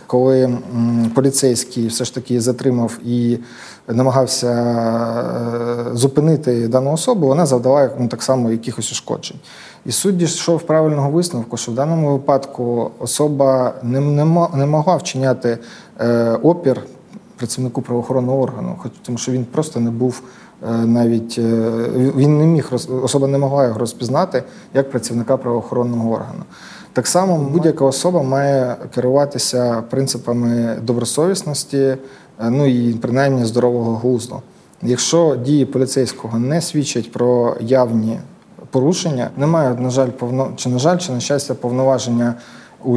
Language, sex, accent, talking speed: Ukrainian, male, native, 125 wpm